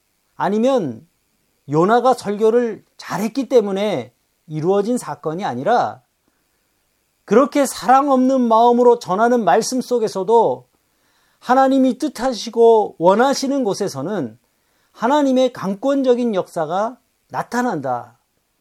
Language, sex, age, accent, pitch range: Korean, male, 40-59, native, 180-245 Hz